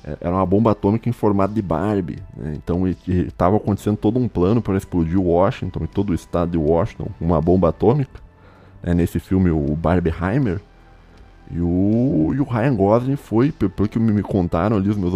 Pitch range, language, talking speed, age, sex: 90-115 Hz, Portuguese, 185 wpm, 20-39, male